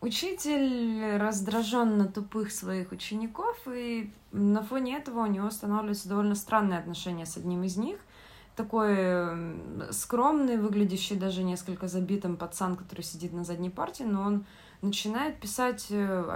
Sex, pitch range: female, 180-225 Hz